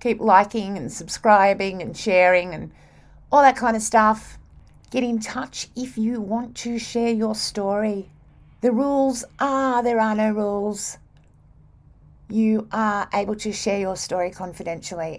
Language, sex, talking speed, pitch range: English, female, 145 wpm, 190-235 Hz